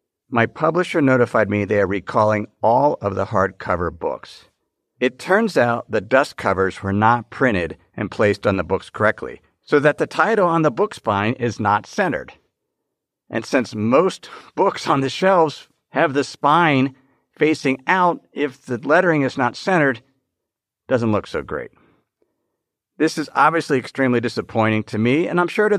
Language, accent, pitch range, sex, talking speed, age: English, American, 115-160 Hz, male, 170 wpm, 50-69